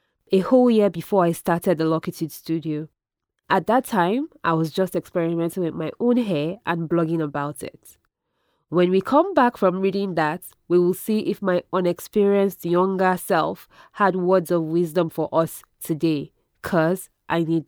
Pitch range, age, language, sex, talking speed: 170-200 Hz, 20-39, English, female, 165 wpm